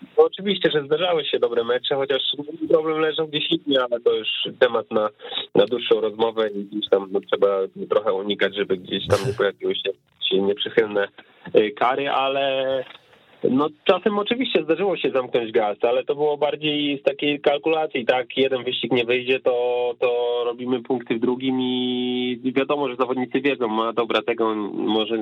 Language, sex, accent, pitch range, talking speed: Polish, male, native, 115-160 Hz, 165 wpm